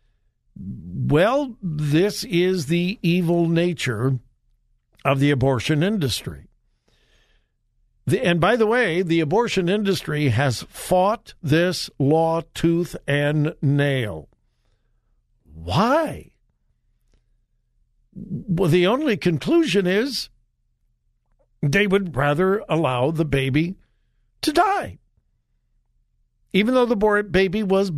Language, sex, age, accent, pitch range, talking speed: English, male, 60-79, American, 135-190 Hz, 90 wpm